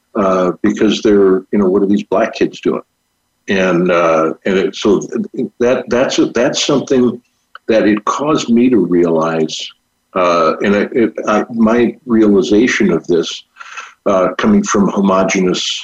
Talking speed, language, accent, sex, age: 150 wpm, English, American, male, 60-79